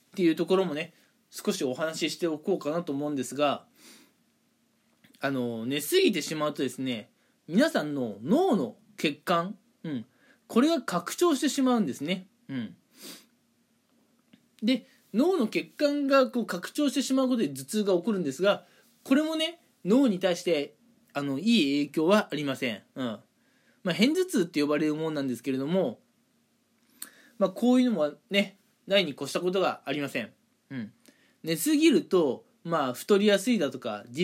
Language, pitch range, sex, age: Japanese, 150-245 Hz, male, 20-39